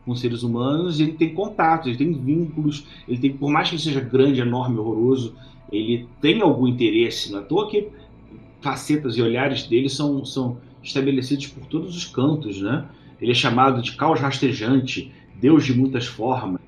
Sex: male